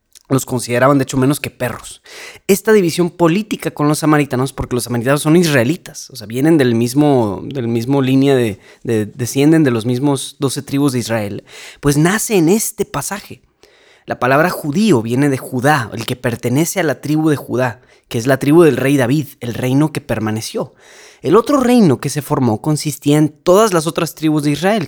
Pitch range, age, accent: 125-160 Hz, 20-39, Mexican